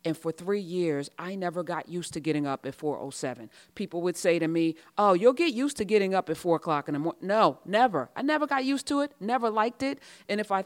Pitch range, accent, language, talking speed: 165-200 Hz, American, English, 255 wpm